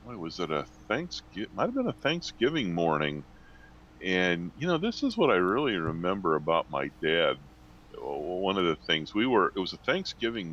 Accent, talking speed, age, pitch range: American, 180 wpm, 40-59, 75-95 Hz